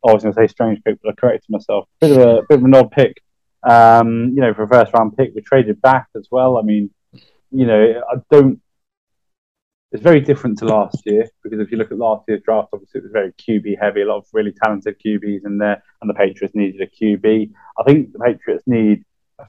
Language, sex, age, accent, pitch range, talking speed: English, male, 20-39, British, 105-130 Hz, 235 wpm